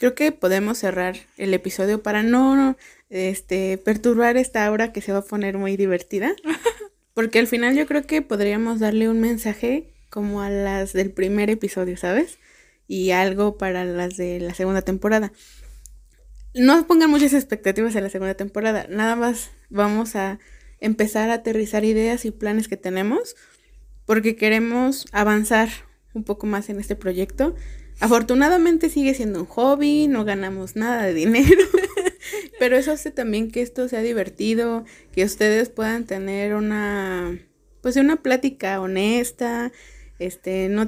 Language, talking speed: Spanish, 150 wpm